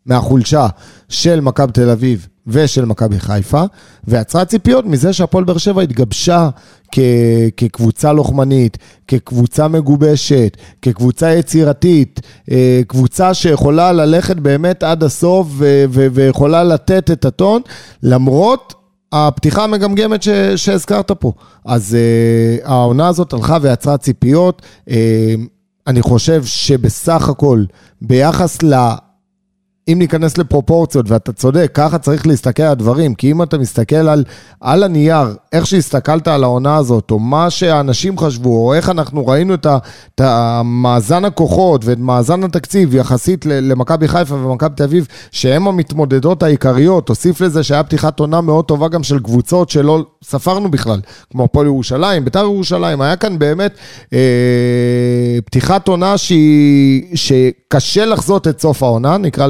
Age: 30-49